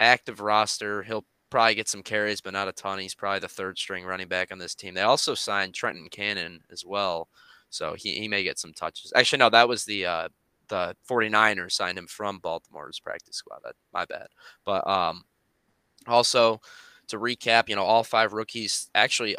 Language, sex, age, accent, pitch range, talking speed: English, male, 20-39, American, 95-110 Hz, 195 wpm